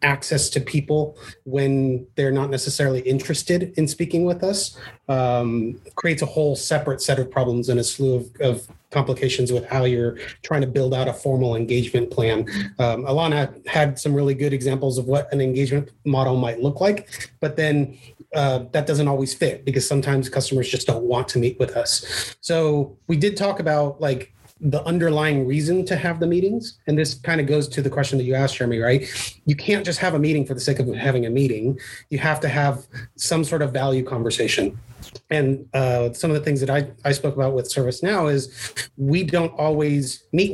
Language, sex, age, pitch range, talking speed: English, male, 30-49, 130-155 Hz, 200 wpm